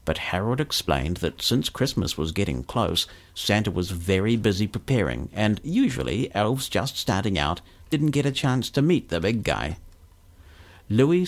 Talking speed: 160 wpm